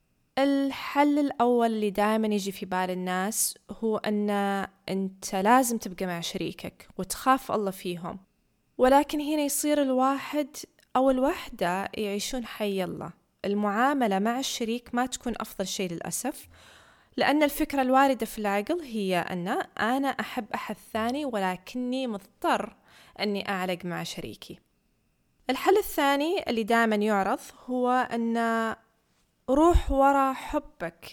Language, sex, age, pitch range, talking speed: Arabic, female, 20-39, 195-260 Hz, 120 wpm